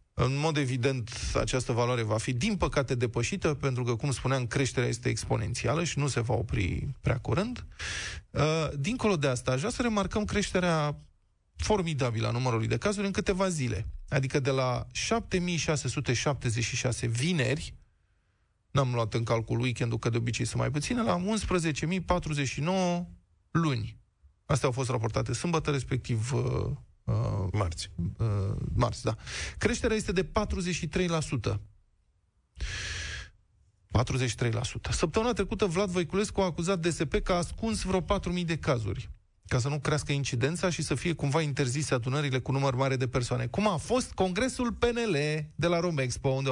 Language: Romanian